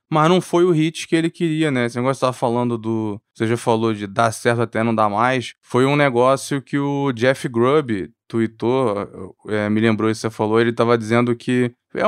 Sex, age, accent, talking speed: male, 20-39, Brazilian, 220 wpm